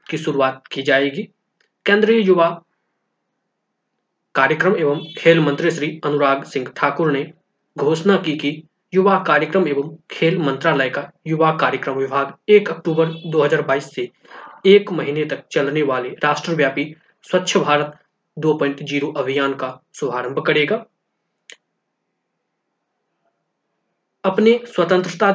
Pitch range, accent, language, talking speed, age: 140-180 Hz, native, Hindi, 105 wpm, 20-39